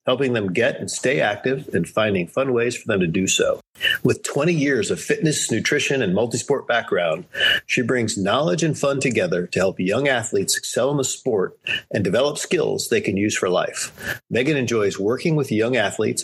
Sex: male